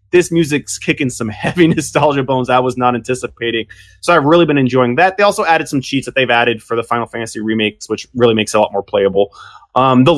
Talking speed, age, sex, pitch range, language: 235 wpm, 20-39, male, 120-150 Hz, English